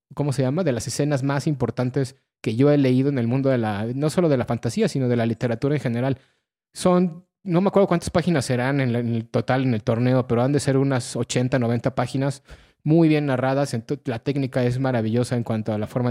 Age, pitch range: 20-39, 125-145 Hz